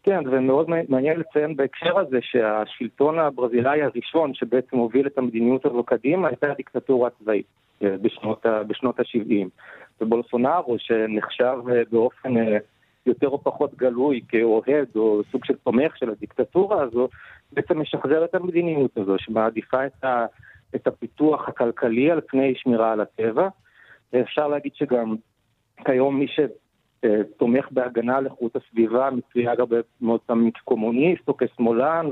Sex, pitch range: male, 115-140 Hz